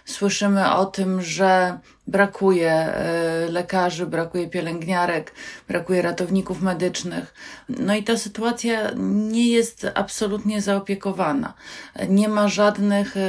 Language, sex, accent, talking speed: Polish, female, native, 100 wpm